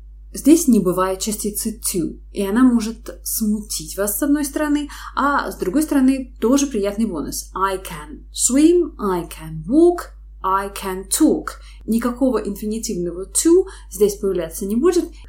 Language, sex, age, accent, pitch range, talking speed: Russian, female, 20-39, native, 180-265 Hz, 140 wpm